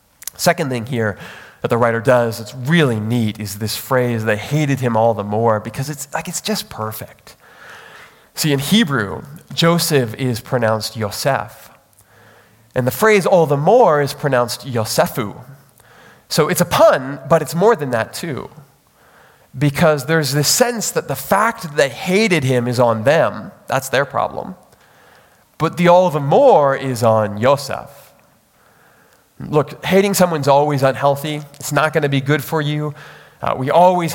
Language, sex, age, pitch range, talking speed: English, male, 20-39, 125-160 Hz, 160 wpm